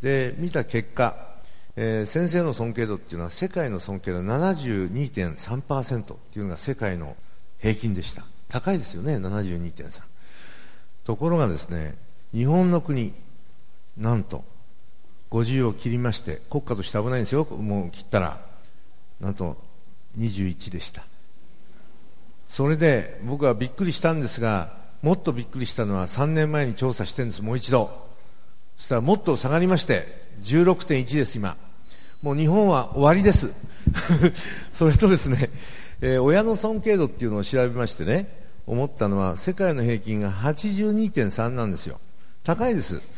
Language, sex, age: Japanese, male, 50-69